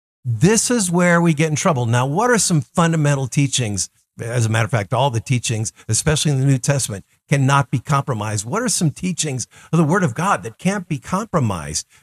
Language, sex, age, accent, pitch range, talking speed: English, male, 50-69, American, 145-195 Hz, 210 wpm